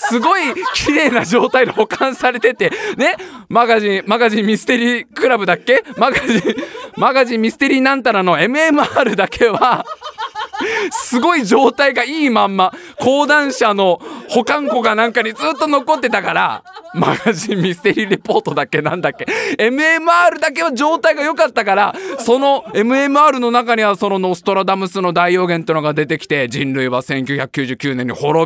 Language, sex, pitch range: Japanese, male, 205-320 Hz